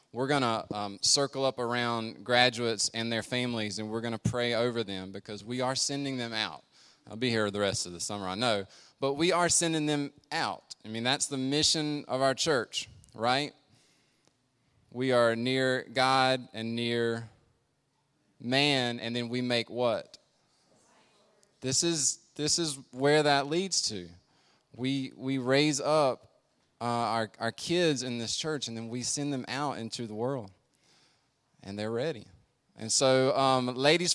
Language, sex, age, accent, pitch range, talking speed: English, male, 20-39, American, 120-150 Hz, 170 wpm